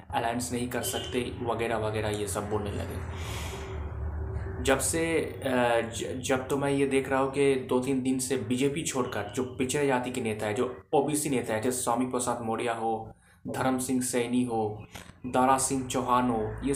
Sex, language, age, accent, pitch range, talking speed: male, Hindi, 20-39, native, 110-135 Hz, 180 wpm